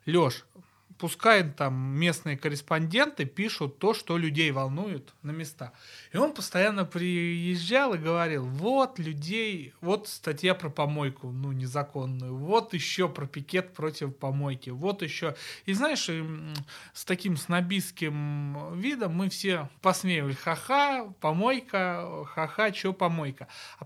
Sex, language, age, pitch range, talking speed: male, Russian, 30-49, 145-180 Hz, 125 wpm